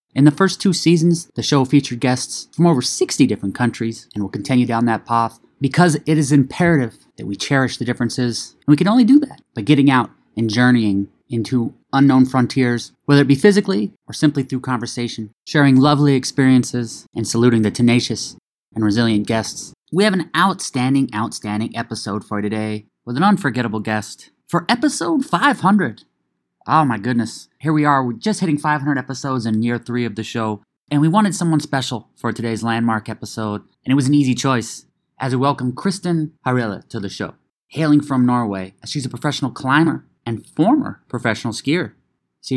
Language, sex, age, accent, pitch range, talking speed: English, male, 30-49, American, 115-145 Hz, 185 wpm